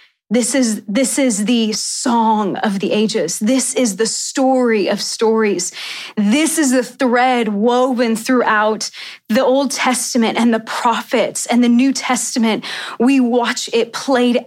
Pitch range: 220-255 Hz